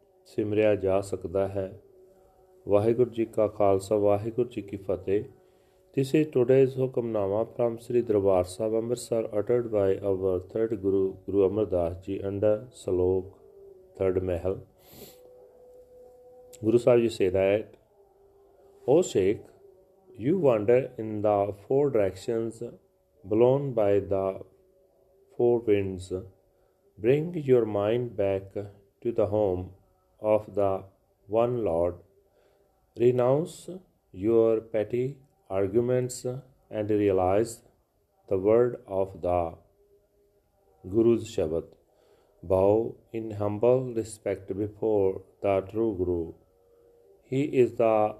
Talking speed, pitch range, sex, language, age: 105 wpm, 100-140 Hz, male, Punjabi, 30-49